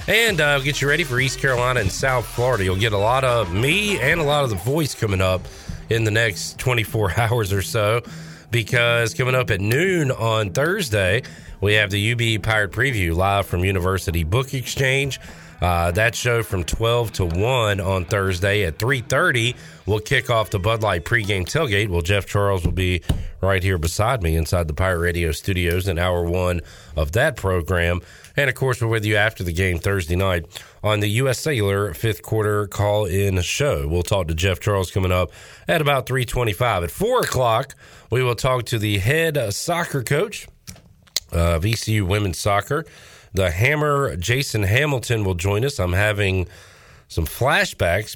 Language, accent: English, American